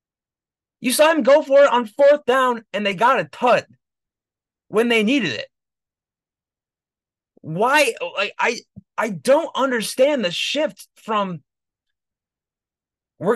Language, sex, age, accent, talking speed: English, male, 20-39, American, 125 wpm